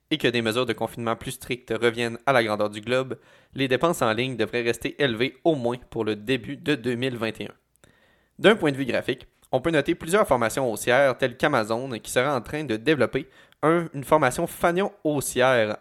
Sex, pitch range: male, 115-150 Hz